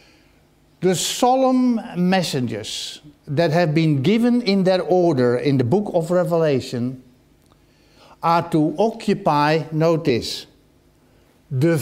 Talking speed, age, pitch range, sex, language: 100 wpm, 60-79, 140-200 Hz, male, English